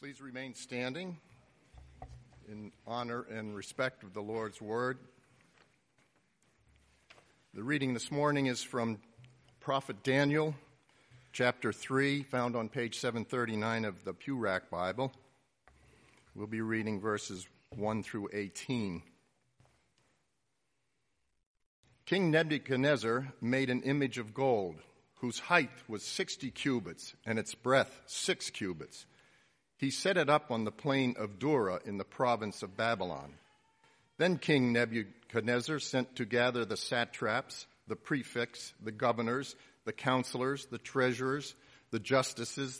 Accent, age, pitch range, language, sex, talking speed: American, 50-69, 110-135 Hz, English, male, 120 wpm